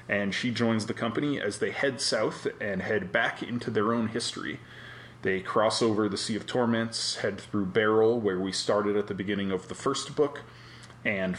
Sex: male